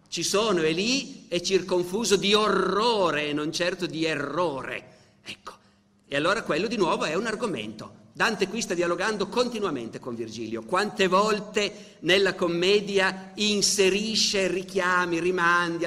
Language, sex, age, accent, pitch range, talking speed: Italian, male, 50-69, native, 135-190 Hz, 130 wpm